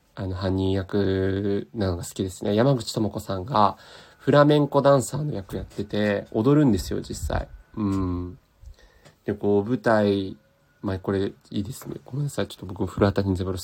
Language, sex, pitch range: Japanese, male, 95-115 Hz